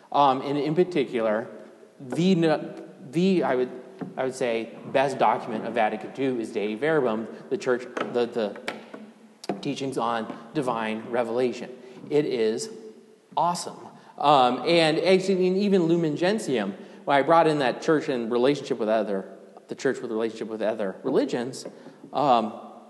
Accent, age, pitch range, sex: American, 30-49, 125-165 Hz, male